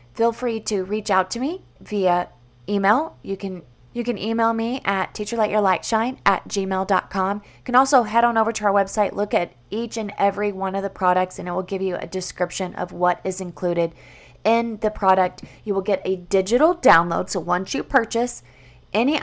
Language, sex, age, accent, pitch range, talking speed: English, female, 20-39, American, 185-225 Hz, 195 wpm